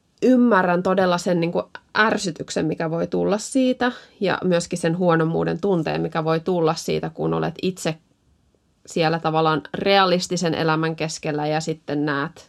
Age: 20-39